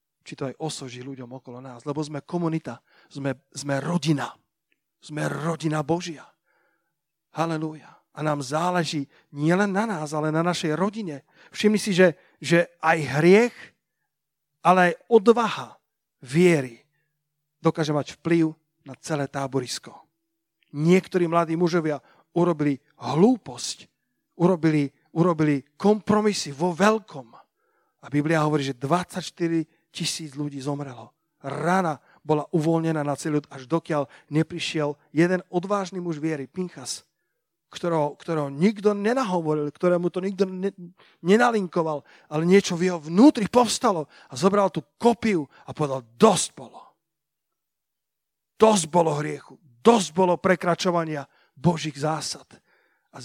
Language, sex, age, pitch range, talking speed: Slovak, male, 40-59, 145-180 Hz, 120 wpm